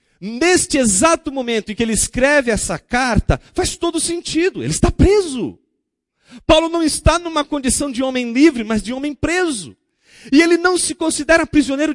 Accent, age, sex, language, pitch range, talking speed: Brazilian, 40-59, male, Portuguese, 175-265 Hz, 165 wpm